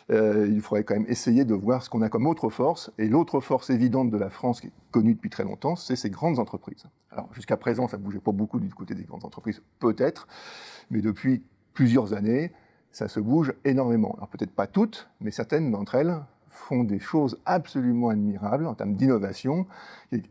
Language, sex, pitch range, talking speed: French, male, 105-130 Hz, 205 wpm